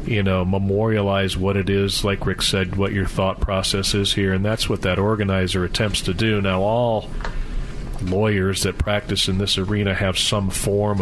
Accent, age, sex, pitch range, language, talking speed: American, 40-59, male, 90-105 Hz, English, 185 wpm